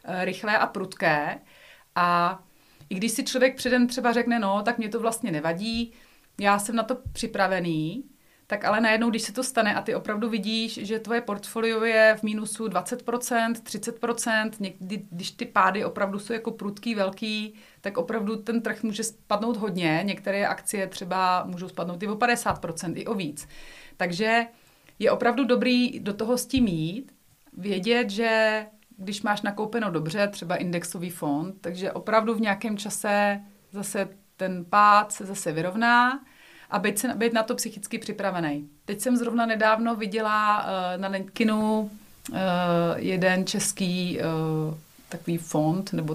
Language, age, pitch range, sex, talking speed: Czech, 30-49, 185-230 Hz, female, 155 wpm